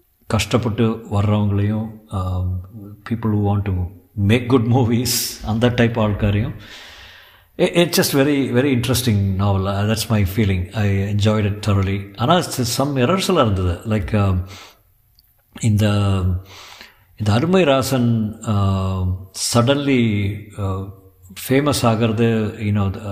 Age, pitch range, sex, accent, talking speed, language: 50-69, 100-120 Hz, male, native, 100 wpm, Tamil